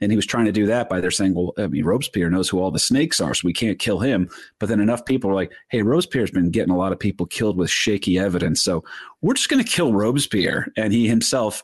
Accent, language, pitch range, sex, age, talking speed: American, English, 95-135 Hz, male, 40-59, 275 wpm